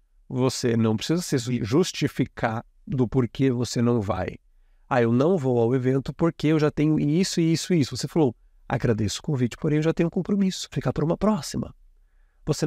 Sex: male